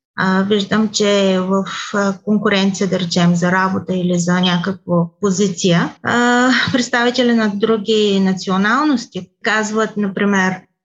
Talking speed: 105 wpm